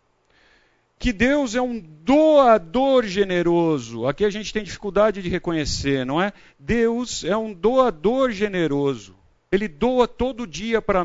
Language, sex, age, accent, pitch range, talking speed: Portuguese, male, 50-69, Brazilian, 150-220 Hz, 135 wpm